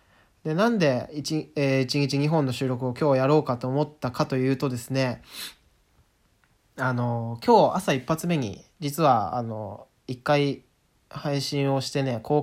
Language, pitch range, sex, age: Japanese, 130-165 Hz, male, 20-39